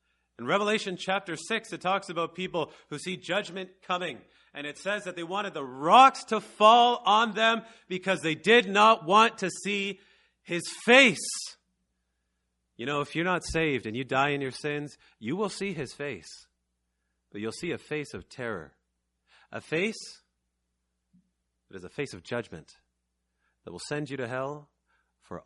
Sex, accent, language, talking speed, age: male, American, English, 170 wpm, 30-49